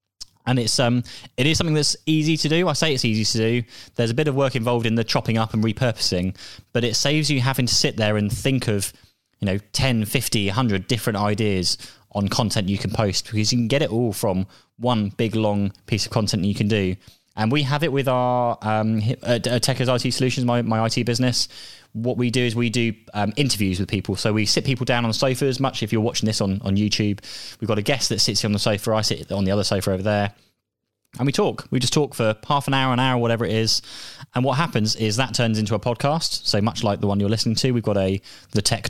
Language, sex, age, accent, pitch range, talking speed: English, male, 20-39, British, 105-125 Hz, 255 wpm